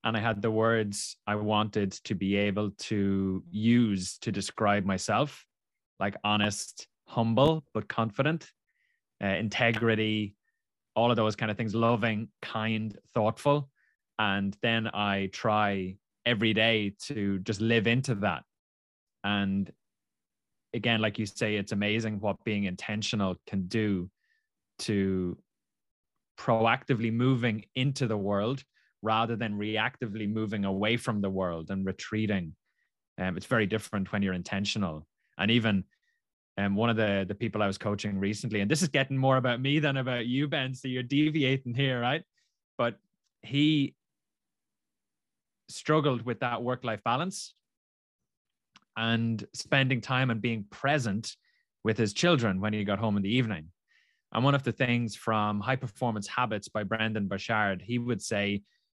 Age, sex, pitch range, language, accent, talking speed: 20-39, male, 100-120 Hz, English, Irish, 145 wpm